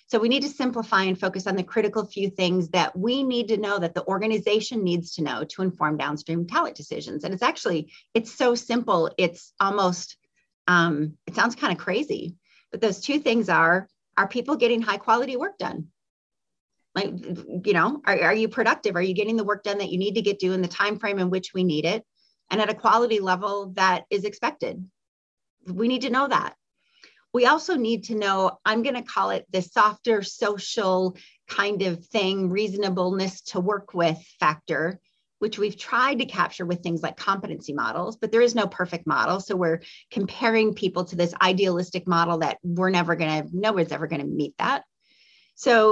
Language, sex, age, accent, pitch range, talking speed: English, female, 30-49, American, 180-220 Hz, 200 wpm